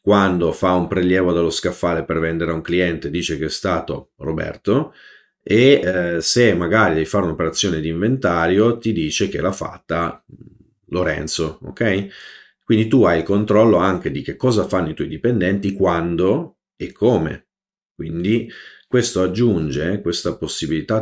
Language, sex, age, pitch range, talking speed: Italian, male, 40-59, 80-105 Hz, 150 wpm